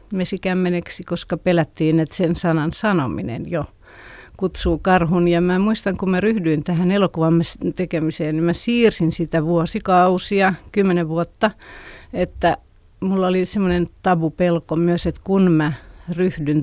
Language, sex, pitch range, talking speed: Finnish, female, 165-195 Hz, 130 wpm